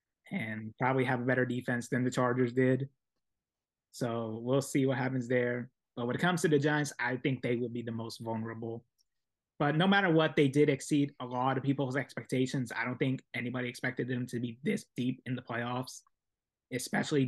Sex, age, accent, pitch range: male, 20-39, American, 120-140 Hz